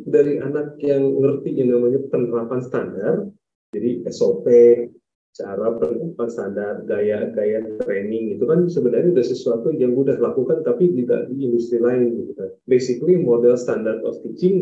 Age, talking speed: 30-49, 145 wpm